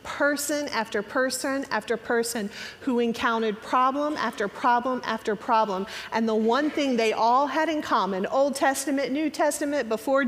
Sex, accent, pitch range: female, American, 225-275 Hz